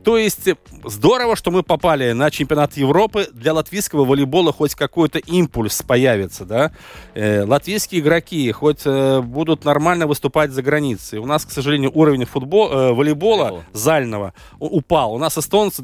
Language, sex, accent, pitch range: Russian, male, native, 135-180 Hz